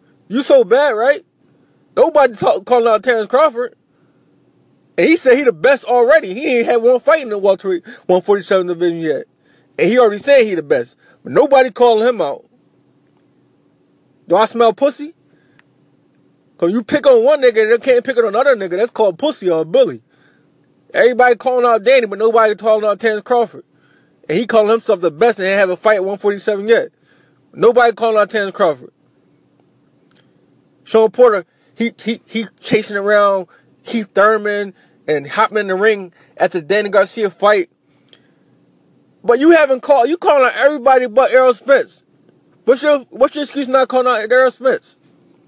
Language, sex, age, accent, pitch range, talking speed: English, male, 20-39, American, 205-265 Hz, 175 wpm